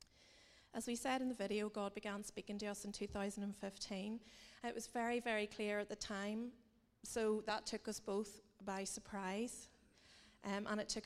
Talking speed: 175 wpm